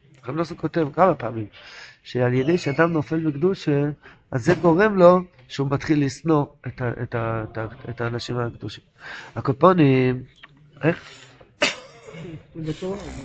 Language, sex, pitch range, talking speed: Hebrew, male, 125-160 Hz, 100 wpm